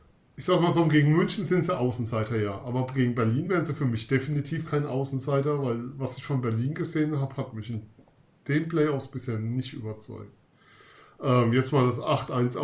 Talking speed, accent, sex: 190 wpm, German, male